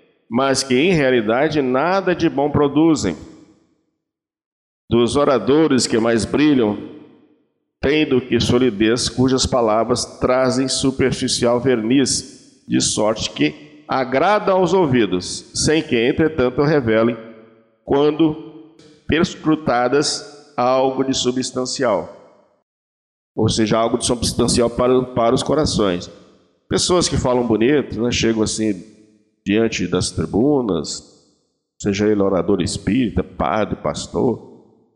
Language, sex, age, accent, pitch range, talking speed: Portuguese, male, 50-69, Brazilian, 110-140 Hz, 105 wpm